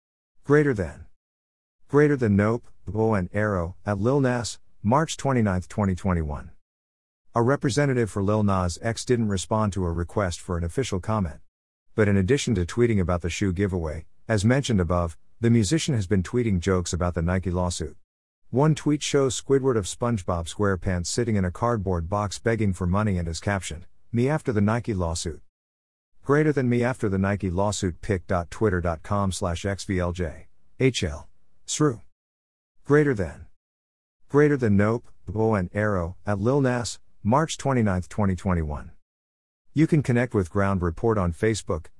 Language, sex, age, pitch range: English, male, 50-69, 90-115 Hz